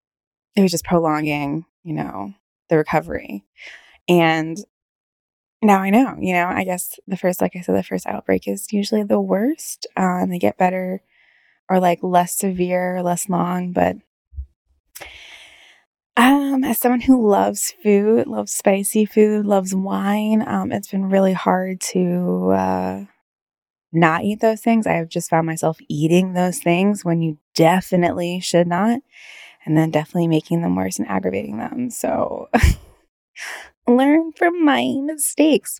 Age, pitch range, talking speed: 20-39, 165-210 Hz, 150 wpm